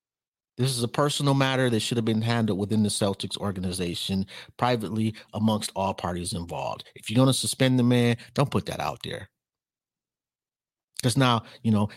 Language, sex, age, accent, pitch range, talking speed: English, male, 30-49, American, 105-130 Hz, 175 wpm